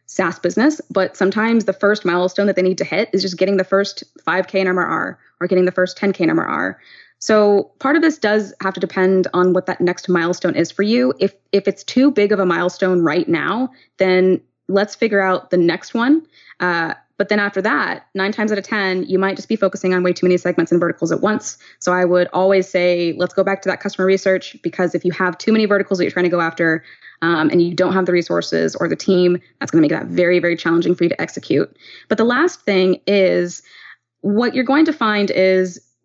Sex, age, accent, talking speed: female, 20-39, American, 235 wpm